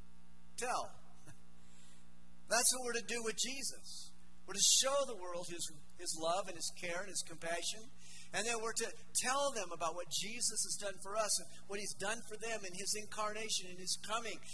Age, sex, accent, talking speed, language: 50-69, male, American, 195 wpm, English